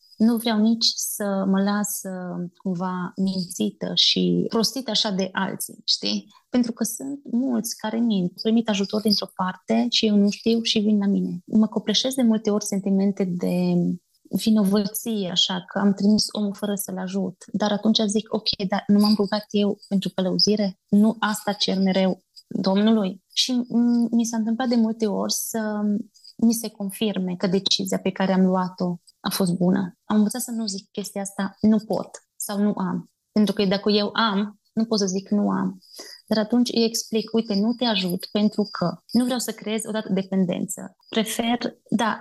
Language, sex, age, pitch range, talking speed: Romanian, female, 20-39, 195-225 Hz, 180 wpm